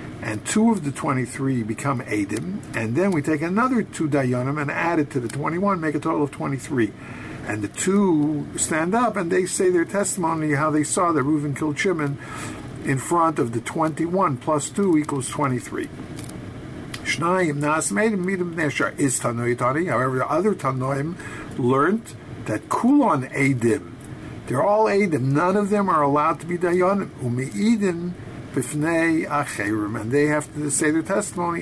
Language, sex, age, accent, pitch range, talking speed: English, male, 60-79, American, 130-180 Hz, 145 wpm